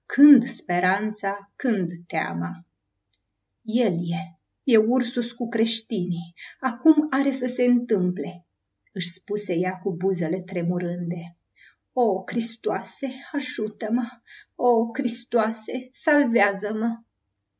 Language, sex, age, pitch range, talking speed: Romanian, female, 30-49, 180-245 Hz, 90 wpm